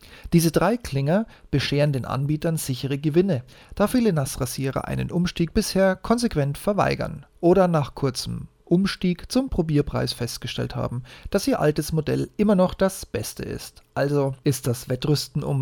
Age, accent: 40-59, German